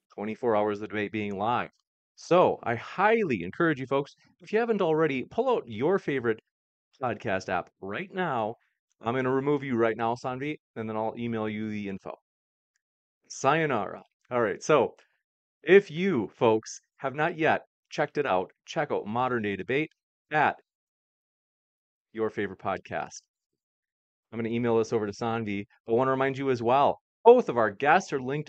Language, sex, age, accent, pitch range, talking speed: English, male, 30-49, American, 110-150 Hz, 175 wpm